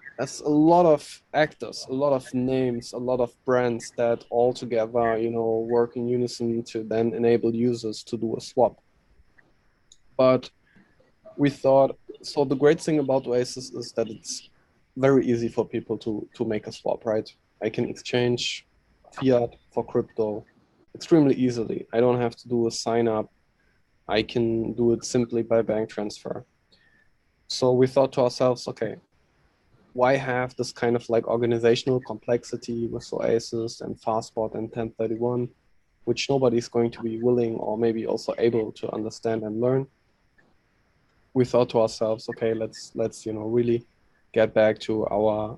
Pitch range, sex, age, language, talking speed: 115-125 Hz, male, 20-39, English, 160 wpm